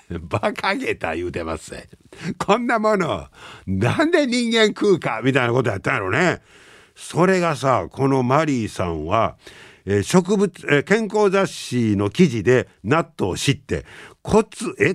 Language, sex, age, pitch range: Japanese, male, 50-69, 100-160 Hz